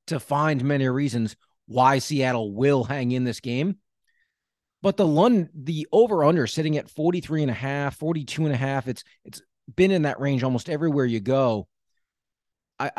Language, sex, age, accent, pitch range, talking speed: English, male, 30-49, American, 125-160 Hz, 175 wpm